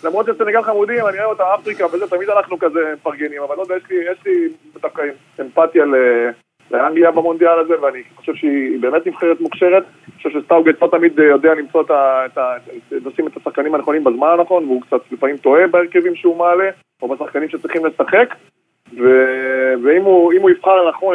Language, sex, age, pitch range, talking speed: Hebrew, male, 20-39, 150-190 Hz, 185 wpm